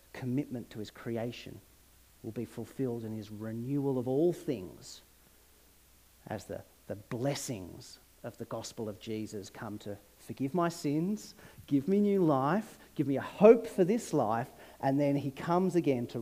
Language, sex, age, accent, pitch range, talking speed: English, male, 40-59, Australian, 125-205 Hz, 165 wpm